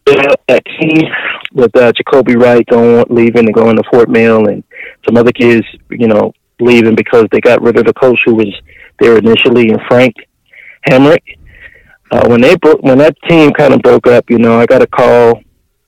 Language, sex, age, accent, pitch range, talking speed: English, male, 30-49, American, 110-125 Hz, 195 wpm